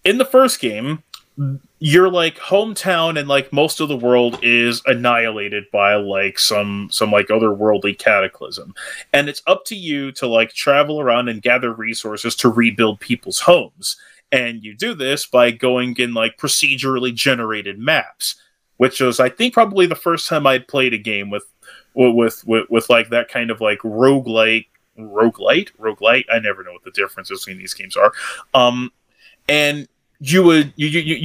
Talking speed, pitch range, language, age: 165 wpm, 120-155 Hz, English, 30-49